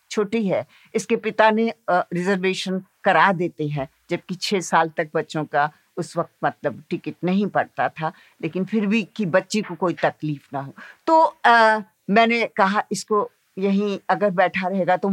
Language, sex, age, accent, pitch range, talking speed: Hindi, female, 60-79, native, 155-195 Hz, 100 wpm